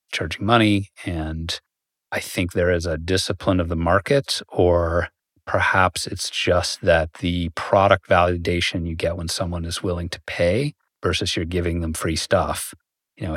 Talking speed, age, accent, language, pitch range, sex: 160 wpm, 40-59, American, English, 85-95 Hz, male